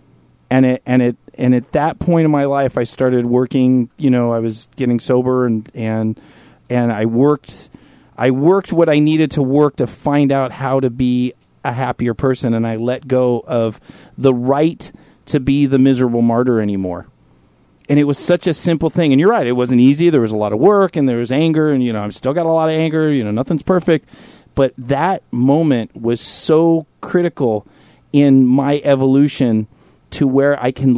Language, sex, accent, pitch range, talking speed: English, male, American, 120-140 Hz, 200 wpm